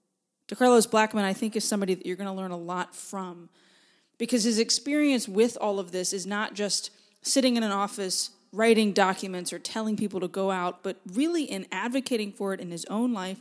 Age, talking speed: 20-39, 205 wpm